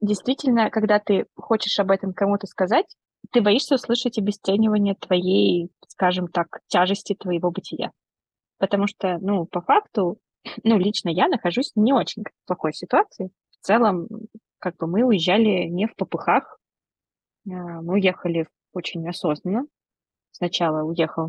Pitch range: 170-215 Hz